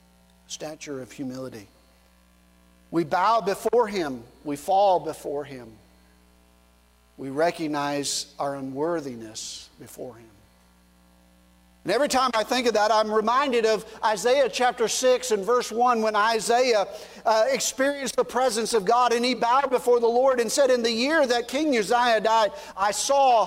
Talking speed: 150 wpm